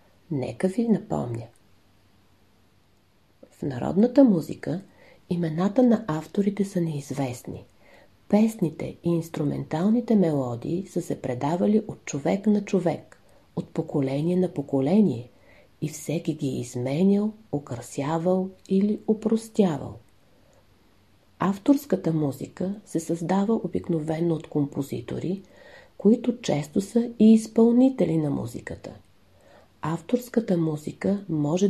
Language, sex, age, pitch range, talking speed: Bulgarian, female, 40-59, 140-200 Hz, 95 wpm